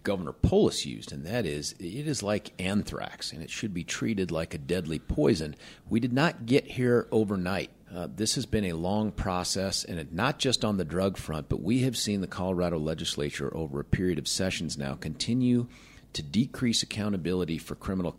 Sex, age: male, 40-59